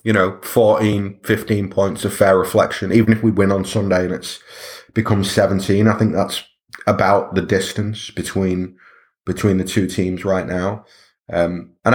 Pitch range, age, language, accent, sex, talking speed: 95-110 Hz, 30-49, English, British, male, 165 wpm